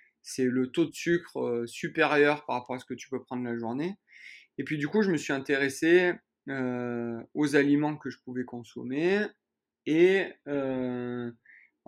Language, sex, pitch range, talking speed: French, male, 130-170 Hz, 165 wpm